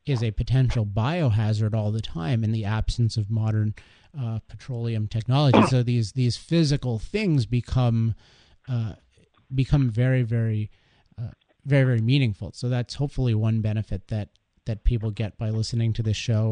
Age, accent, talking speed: 30-49, American, 155 wpm